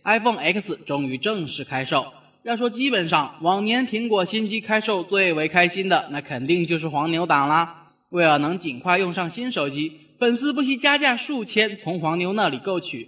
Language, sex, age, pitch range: Chinese, male, 10-29, 140-210 Hz